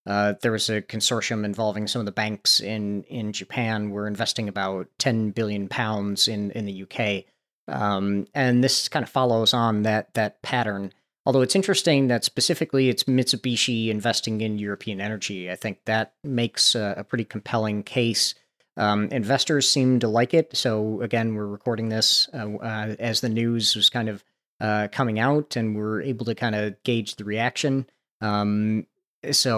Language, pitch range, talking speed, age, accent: English, 105-130 Hz, 175 wpm, 40-59, American